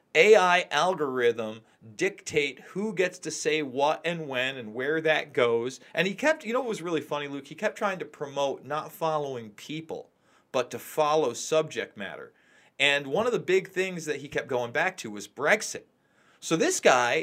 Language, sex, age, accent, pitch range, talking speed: English, male, 40-59, American, 135-180 Hz, 190 wpm